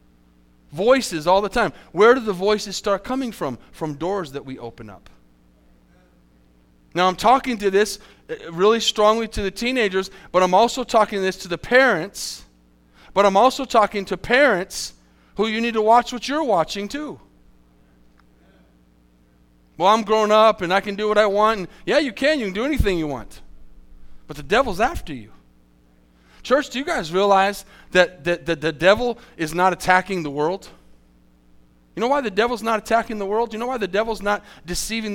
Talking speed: 185 wpm